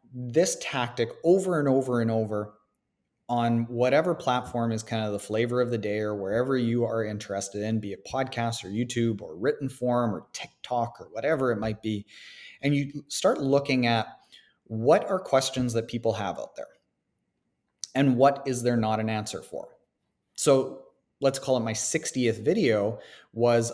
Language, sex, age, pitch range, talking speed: English, male, 30-49, 115-130 Hz, 170 wpm